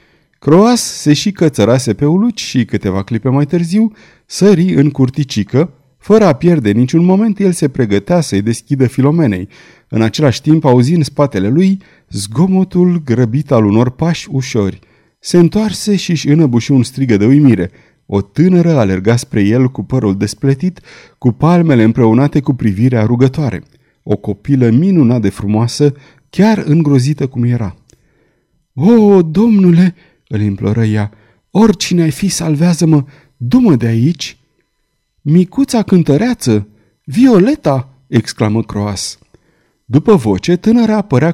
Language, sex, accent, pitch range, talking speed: Romanian, male, native, 115-170 Hz, 130 wpm